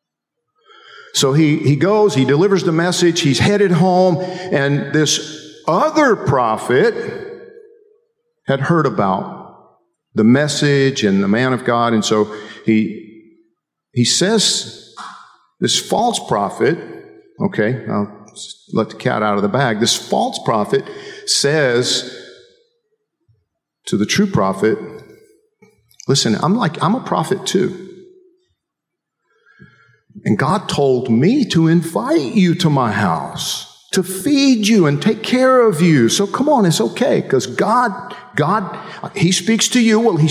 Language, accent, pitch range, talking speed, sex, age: English, American, 135-225 Hz, 130 wpm, male, 50-69